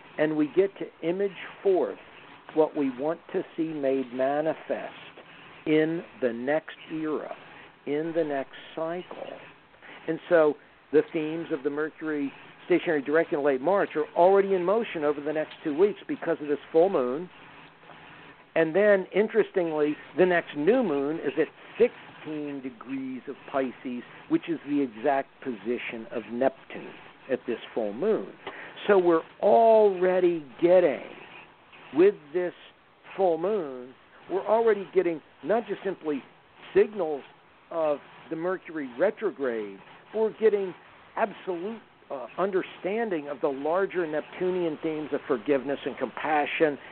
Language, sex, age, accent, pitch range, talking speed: English, male, 60-79, American, 145-195 Hz, 135 wpm